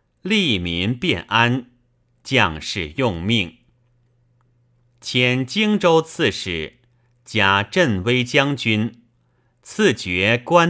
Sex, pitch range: male, 105-135 Hz